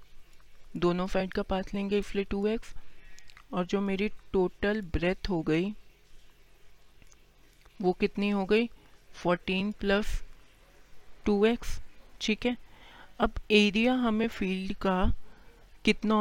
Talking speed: 105 wpm